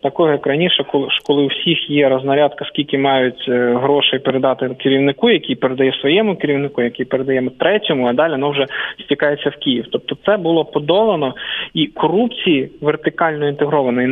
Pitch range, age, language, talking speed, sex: 135-170 Hz, 20-39, English, 155 wpm, male